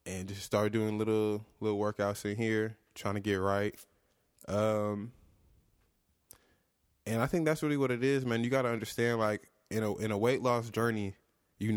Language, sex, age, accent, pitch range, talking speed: English, male, 20-39, American, 95-110 Hz, 185 wpm